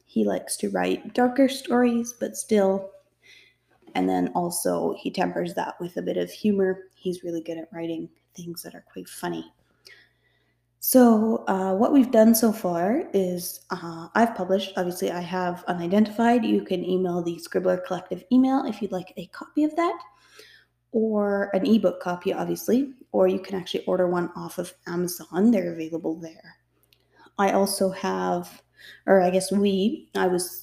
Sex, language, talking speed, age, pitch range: female, English, 165 wpm, 20-39, 175-225 Hz